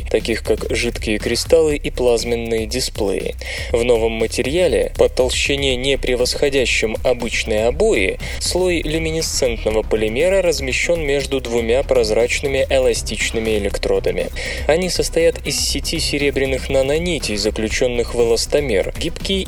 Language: Russian